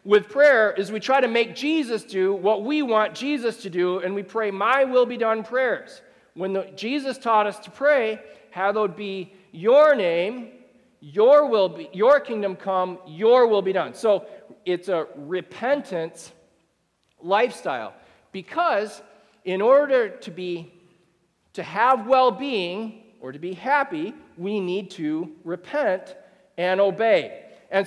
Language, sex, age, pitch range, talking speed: English, male, 40-59, 190-245 Hz, 140 wpm